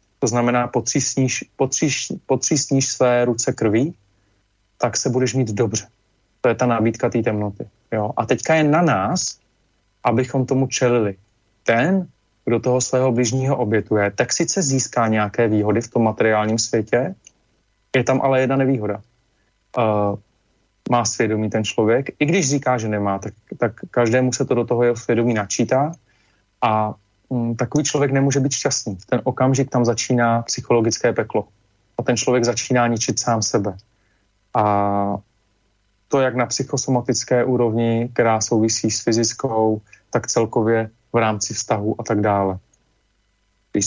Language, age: Slovak, 30-49